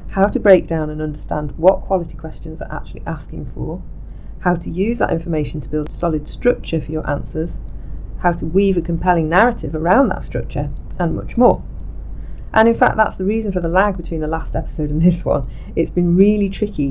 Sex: female